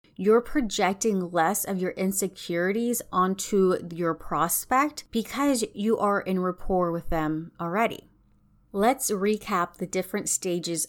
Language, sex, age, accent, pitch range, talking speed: English, female, 30-49, American, 170-205 Hz, 120 wpm